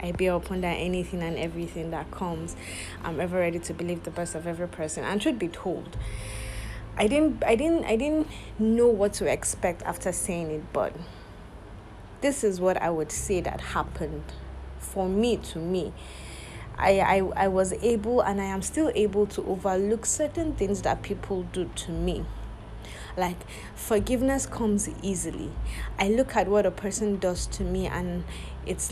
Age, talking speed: 20-39, 170 wpm